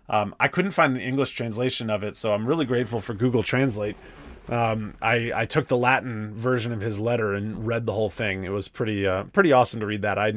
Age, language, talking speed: 30-49, English, 235 wpm